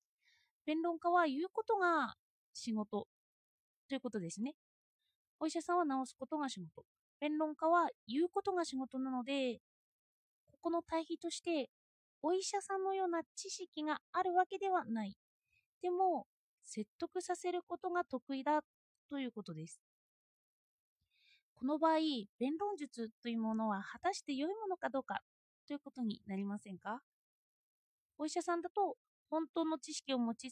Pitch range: 245-345 Hz